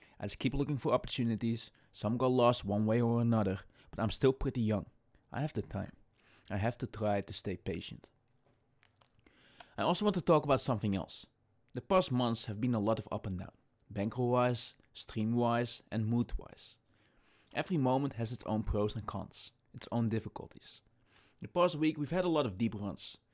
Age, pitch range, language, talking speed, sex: 20-39, 105-130 Hz, English, 190 wpm, male